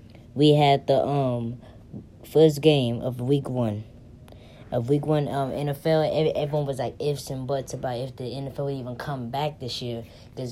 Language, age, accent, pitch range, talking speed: English, 10-29, American, 120-140 Hz, 185 wpm